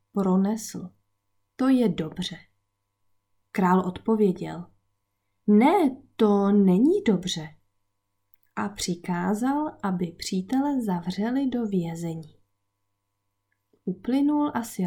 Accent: Czech